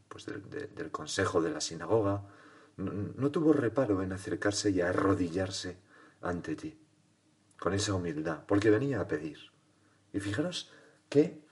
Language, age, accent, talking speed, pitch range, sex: Spanish, 40-59, Spanish, 145 wpm, 100-145 Hz, male